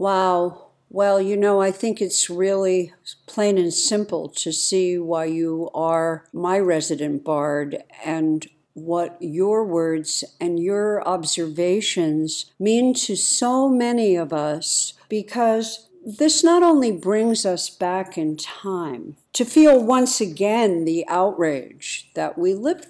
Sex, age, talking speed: female, 60-79, 130 wpm